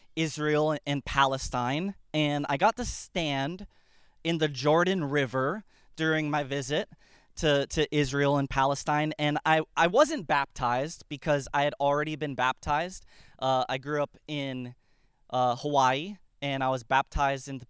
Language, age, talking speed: English, 20-39, 150 wpm